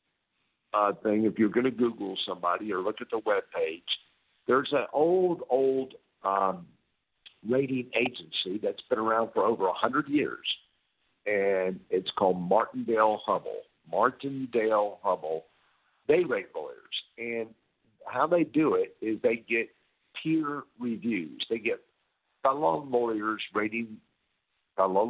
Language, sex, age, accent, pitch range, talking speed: English, male, 50-69, American, 110-175 Hz, 120 wpm